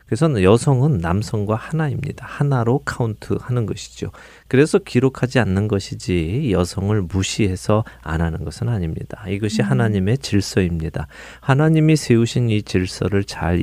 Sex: male